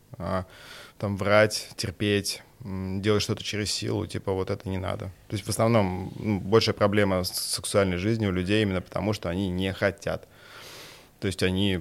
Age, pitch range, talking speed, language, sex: 20-39, 90-105 Hz, 170 wpm, Russian, male